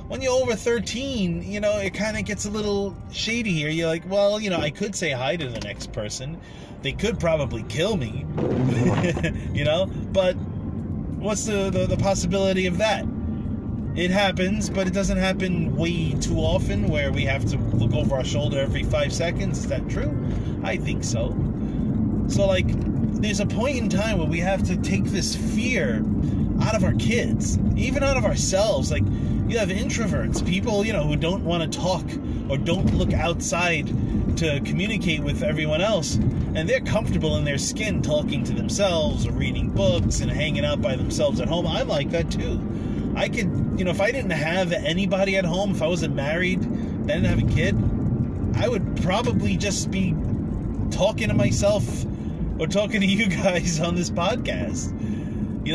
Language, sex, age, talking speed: English, male, 30-49, 185 wpm